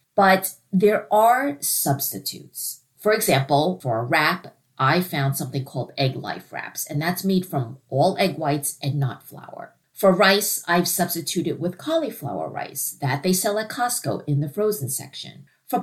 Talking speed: 165 wpm